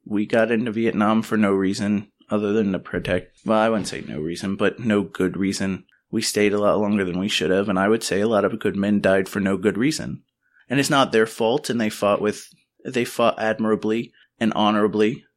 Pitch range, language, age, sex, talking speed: 100-120 Hz, English, 30-49, male, 225 wpm